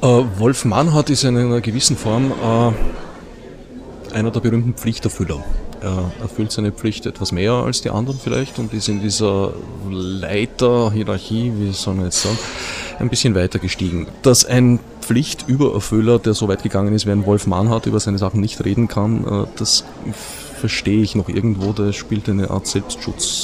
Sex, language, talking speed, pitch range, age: male, German, 170 wpm, 95-115 Hz, 30-49